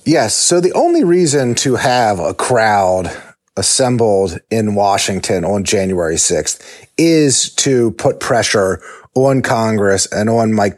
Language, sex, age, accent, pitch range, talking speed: English, male, 30-49, American, 100-125 Hz, 135 wpm